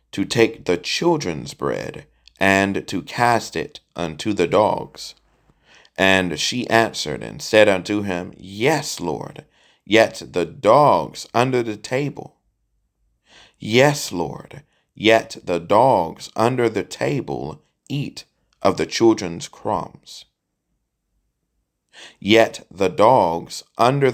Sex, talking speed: male, 110 wpm